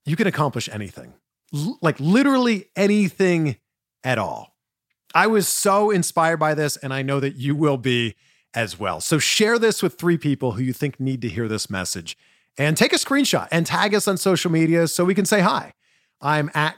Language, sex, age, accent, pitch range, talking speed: English, male, 40-59, American, 125-195 Hz, 200 wpm